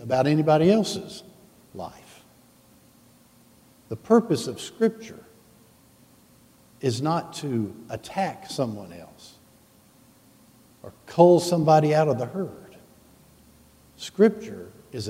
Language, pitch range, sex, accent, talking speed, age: English, 125-175 Hz, male, American, 90 wpm, 60-79